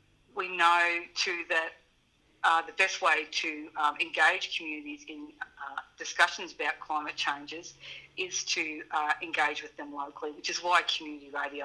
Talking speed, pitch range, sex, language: 155 wpm, 150-170 Hz, female, English